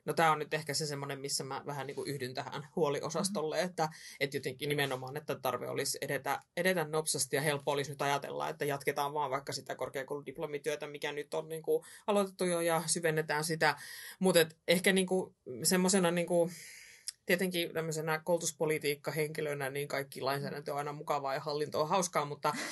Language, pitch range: Finnish, 145-165 Hz